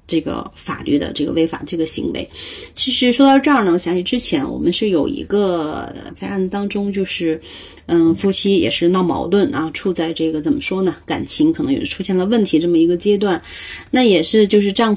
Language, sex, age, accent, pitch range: Chinese, female, 30-49, native, 170-235 Hz